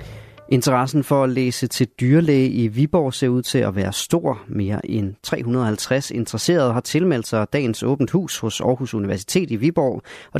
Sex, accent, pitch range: male, native, 105-135 Hz